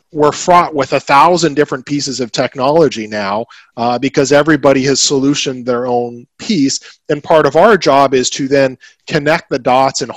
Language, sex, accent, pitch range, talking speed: English, male, American, 125-150 Hz, 175 wpm